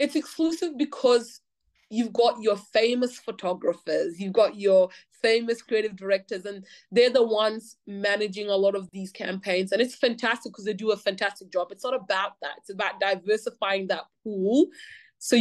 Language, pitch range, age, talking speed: English, 195-250 Hz, 20-39, 170 wpm